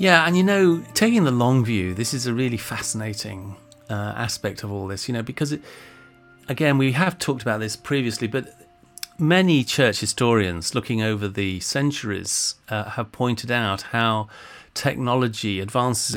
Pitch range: 100-120 Hz